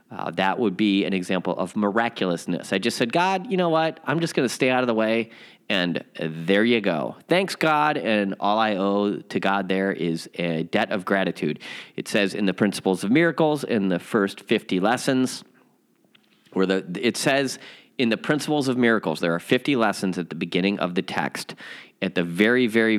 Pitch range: 95-155 Hz